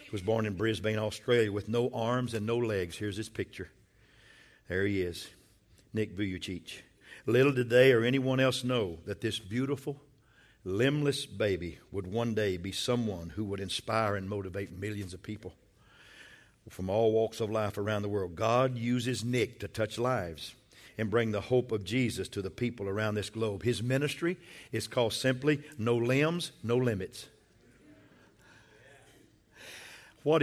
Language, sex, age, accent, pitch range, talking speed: English, male, 50-69, American, 110-155 Hz, 160 wpm